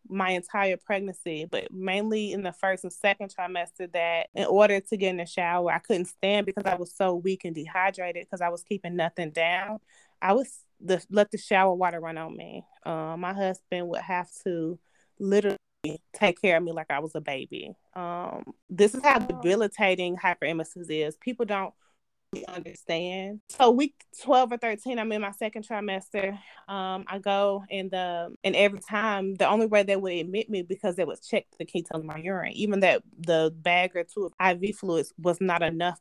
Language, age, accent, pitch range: English, 20-39, American, 170-200 Hz